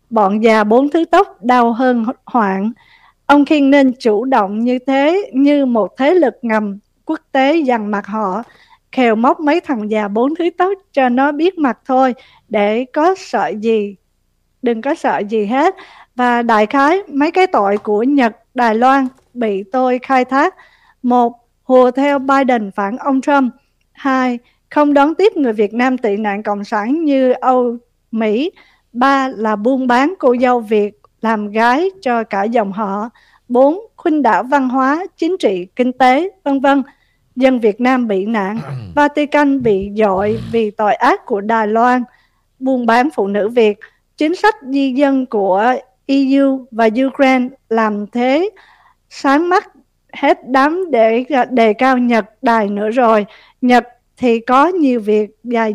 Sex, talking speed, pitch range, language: female, 165 wpm, 220-275 Hz, Vietnamese